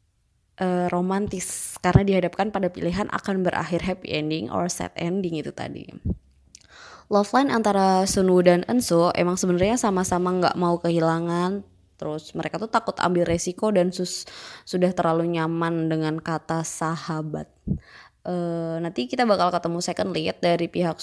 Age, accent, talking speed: 20-39, native, 140 wpm